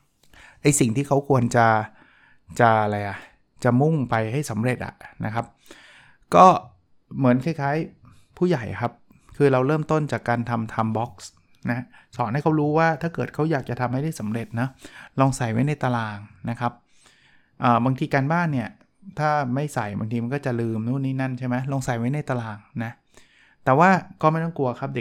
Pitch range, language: 120-145 Hz, Thai